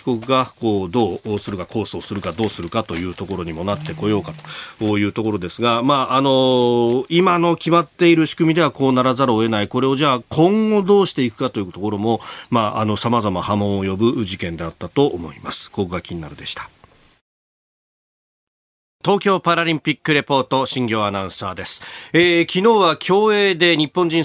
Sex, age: male, 40-59